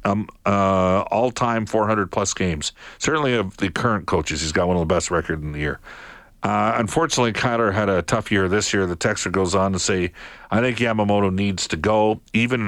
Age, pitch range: 50-69, 90-120 Hz